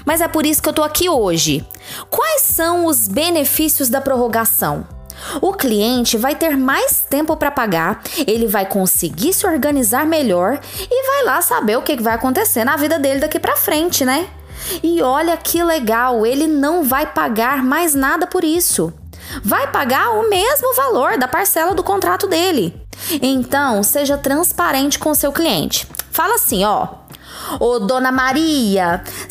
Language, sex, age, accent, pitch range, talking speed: Portuguese, female, 20-39, Brazilian, 215-335 Hz, 165 wpm